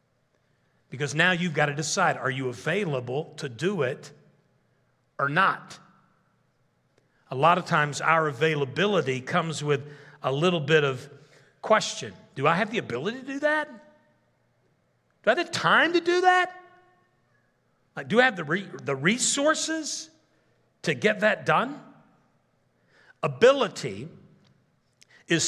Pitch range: 150-215 Hz